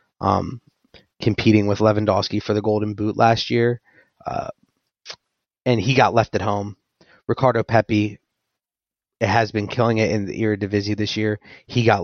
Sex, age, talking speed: male, 30-49, 160 wpm